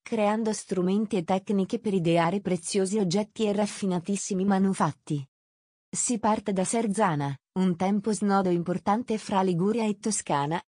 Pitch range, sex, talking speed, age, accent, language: 175-220 Hz, female, 130 wpm, 30-49, native, Italian